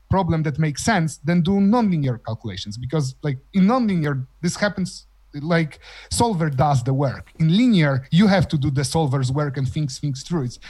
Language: English